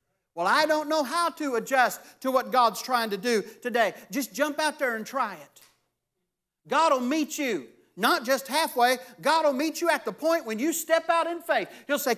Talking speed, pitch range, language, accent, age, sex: 210 wpm, 235-310 Hz, English, American, 50-69, male